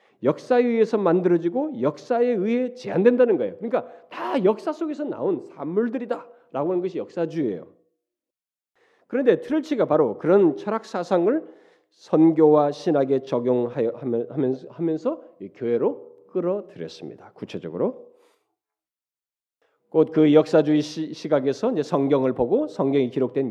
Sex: male